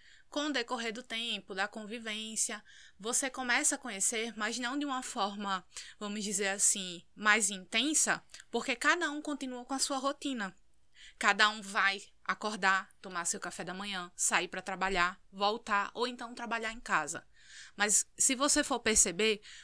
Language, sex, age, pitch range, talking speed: Portuguese, female, 20-39, 200-245 Hz, 160 wpm